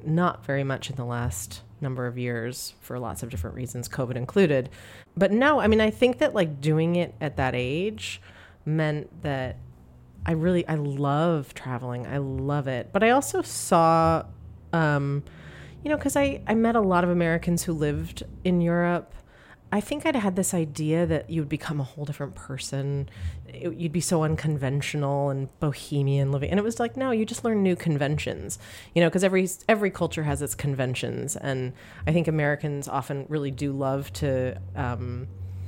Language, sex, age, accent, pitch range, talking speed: English, female, 30-49, American, 125-170 Hz, 180 wpm